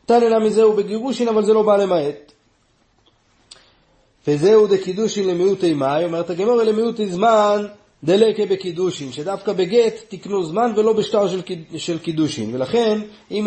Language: Hebrew